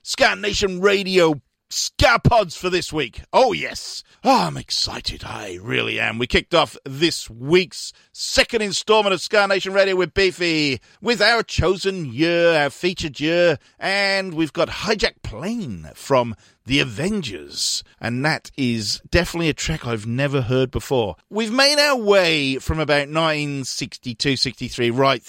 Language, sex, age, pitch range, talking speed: English, male, 40-59, 115-175 Hz, 145 wpm